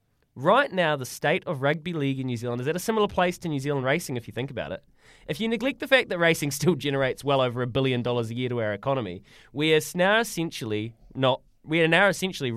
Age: 20-39